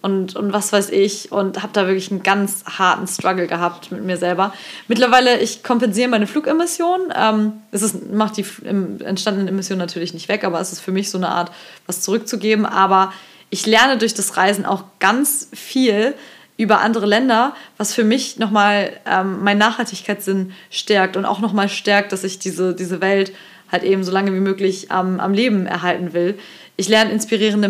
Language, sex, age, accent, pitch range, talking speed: German, female, 20-39, German, 190-225 Hz, 190 wpm